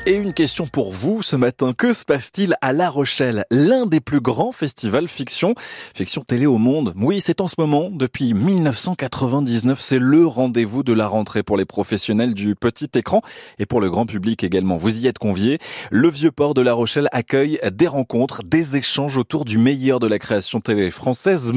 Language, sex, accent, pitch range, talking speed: French, male, French, 115-155 Hz, 200 wpm